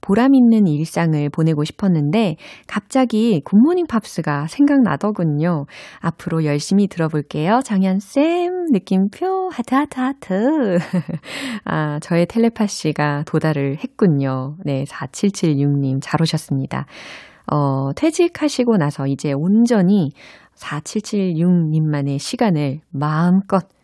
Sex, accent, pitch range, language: female, native, 150-225 Hz, Korean